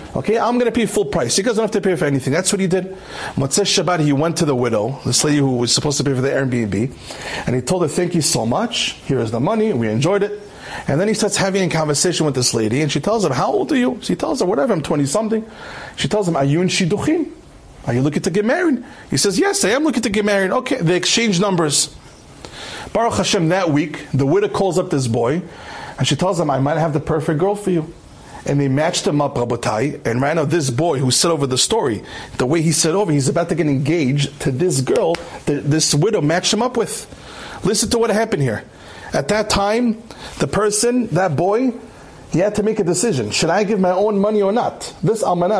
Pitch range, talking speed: 145-215 Hz, 245 wpm